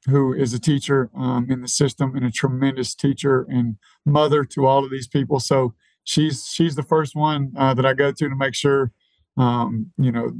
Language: English